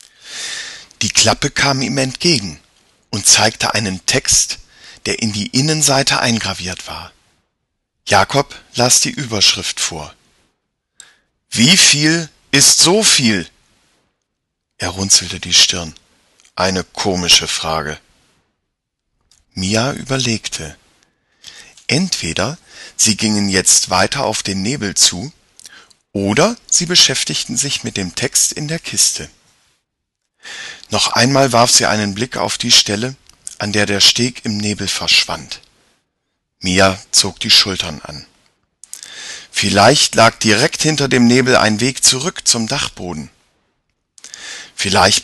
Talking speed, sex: 115 wpm, male